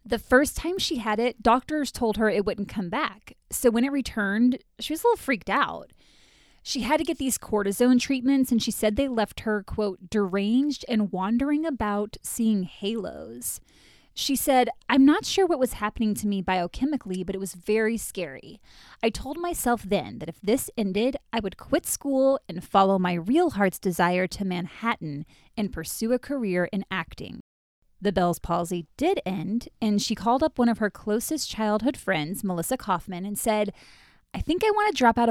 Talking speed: 190 wpm